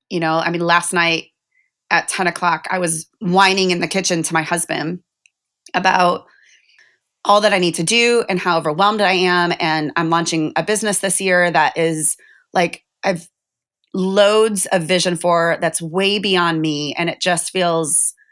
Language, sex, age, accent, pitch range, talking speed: English, female, 30-49, American, 165-195 Hz, 175 wpm